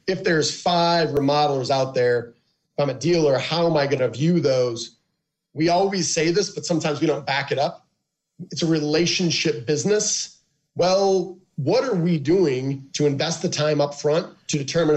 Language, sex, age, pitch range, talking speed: English, male, 30-49, 145-170 Hz, 180 wpm